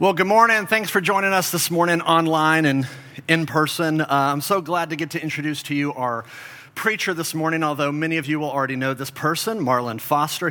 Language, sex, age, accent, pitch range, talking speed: English, male, 40-59, American, 135-160 Hz, 215 wpm